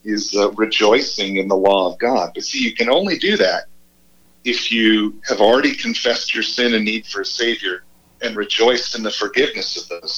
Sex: male